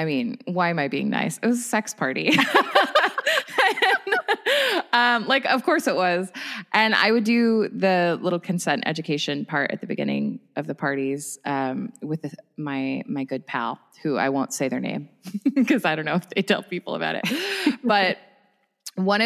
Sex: female